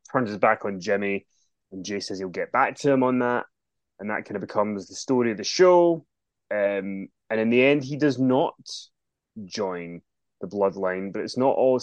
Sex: male